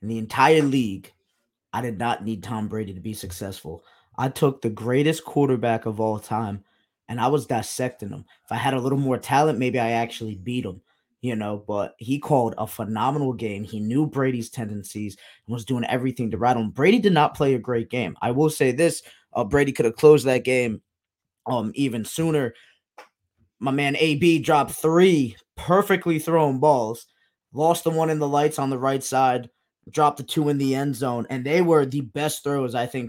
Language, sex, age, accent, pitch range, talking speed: English, male, 20-39, American, 120-150 Hz, 200 wpm